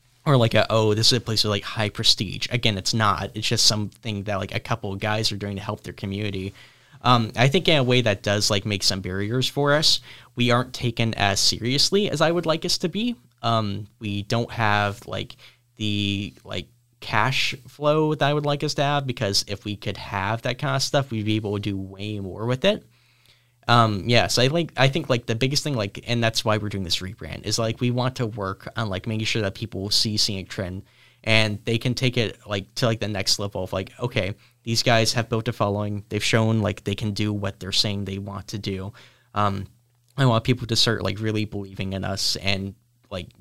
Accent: American